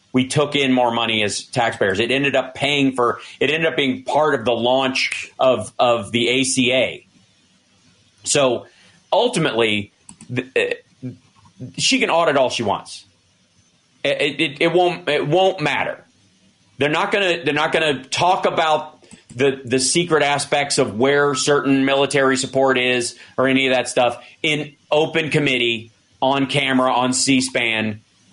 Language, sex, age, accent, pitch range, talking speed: English, male, 40-59, American, 120-145 Hz, 150 wpm